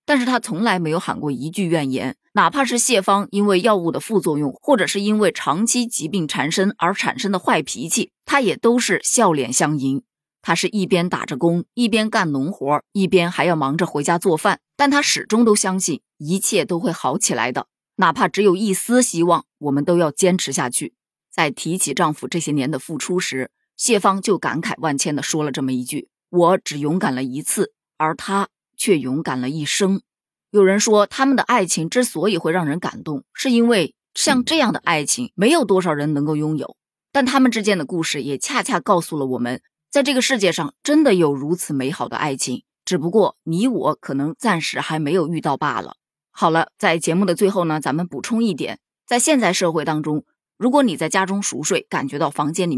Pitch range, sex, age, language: 150-215 Hz, female, 20-39, Chinese